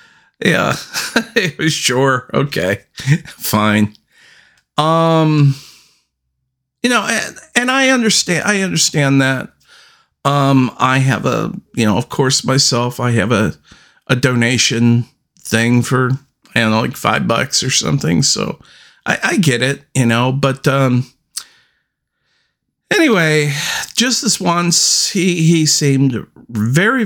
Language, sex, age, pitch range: English, male, 50-69, 115-155 Hz